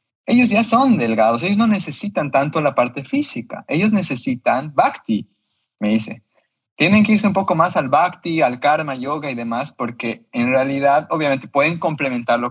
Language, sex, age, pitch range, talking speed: Spanish, male, 20-39, 120-170 Hz, 170 wpm